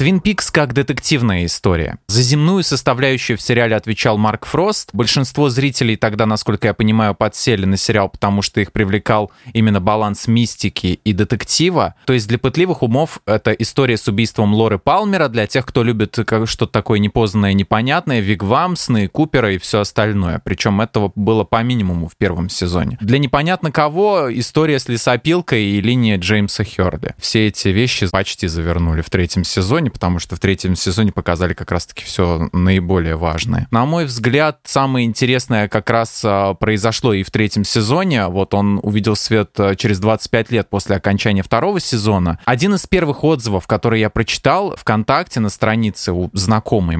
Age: 20-39